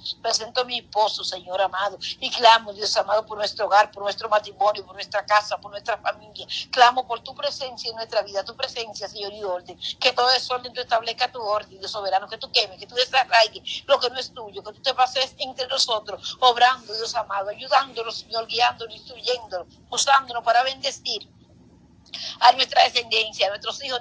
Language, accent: Spanish, American